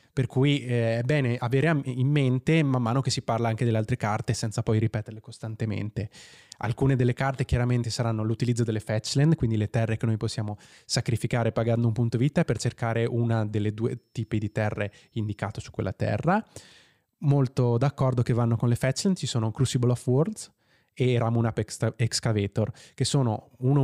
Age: 20-39